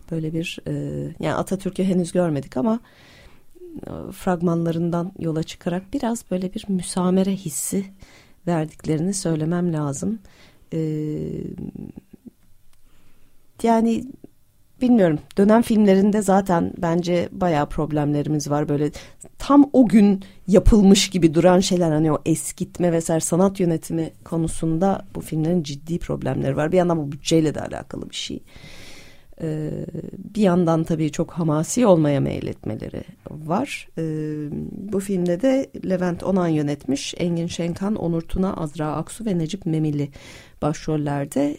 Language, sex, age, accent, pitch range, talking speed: Turkish, female, 40-59, native, 150-190 Hz, 115 wpm